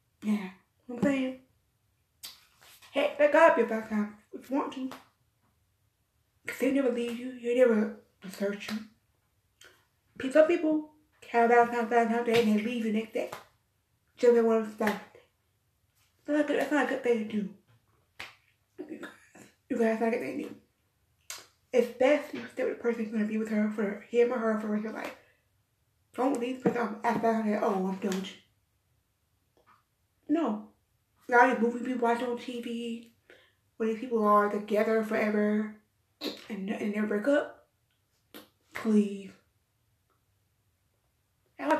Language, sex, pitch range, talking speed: English, female, 210-245 Hz, 165 wpm